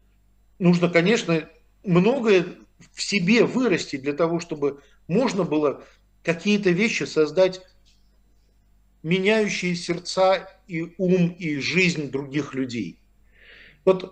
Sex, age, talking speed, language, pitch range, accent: male, 50-69, 95 wpm, Russian, 140-180 Hz, native